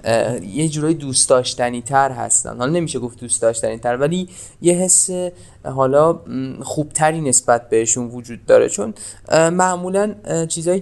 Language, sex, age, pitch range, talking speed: Persian, male, 20-39, 125-160 Hz, 135 wpm